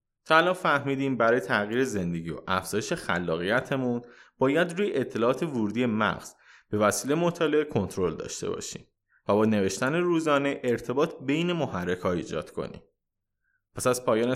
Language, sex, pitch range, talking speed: Persian, male, 105-155 Hz, 140 wpm